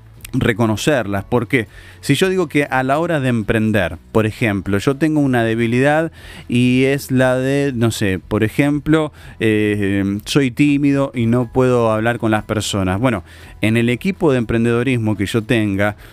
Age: 30-49